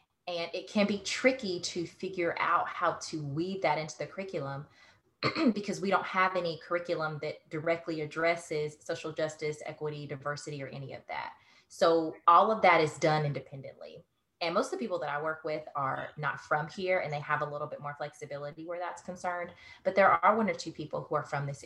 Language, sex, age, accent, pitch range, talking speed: English, female, 20-39, American, 140-165 Hz, 205 wpm